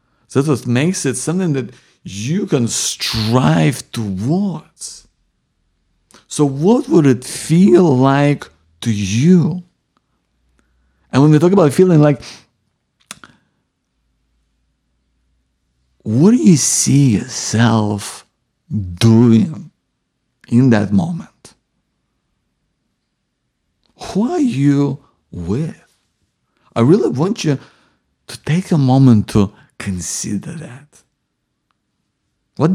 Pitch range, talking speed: 110-165 Hz, 95 wpm